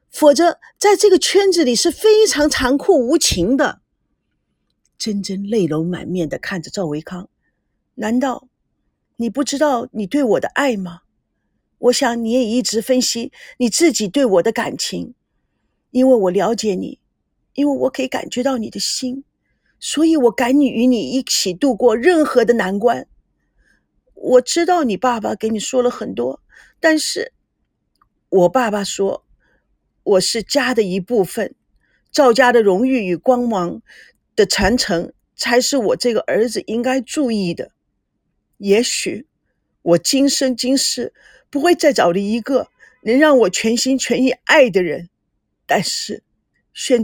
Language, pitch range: Chinese, 225-300 Hz